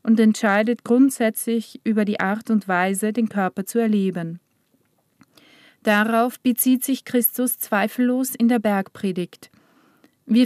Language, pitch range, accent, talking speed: German, 205-235 Hz, German, 120 wpm